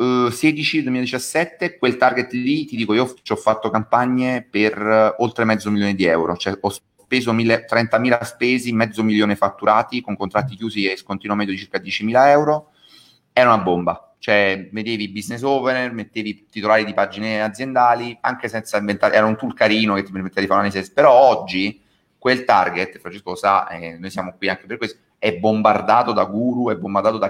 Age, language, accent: 30-49, Italian, native